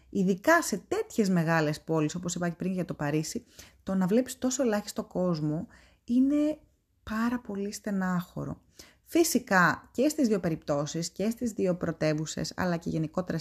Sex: female